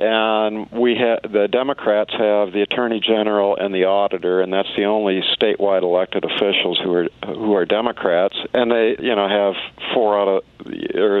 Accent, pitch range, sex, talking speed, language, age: American, 100-125 Hz, male, 175 wpm, English, 50-69